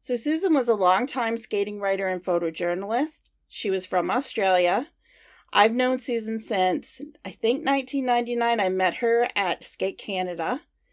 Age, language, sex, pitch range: 40-59, English, female, 190-245 Hz